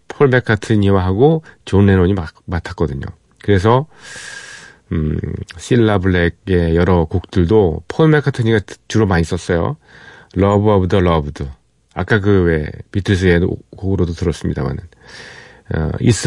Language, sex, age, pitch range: Korean, male, 40-59, 90-125 Hz